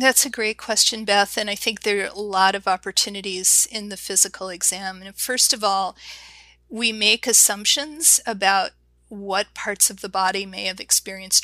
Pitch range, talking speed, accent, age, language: 195-220 Hz, 180 wpm, American, 40-59, English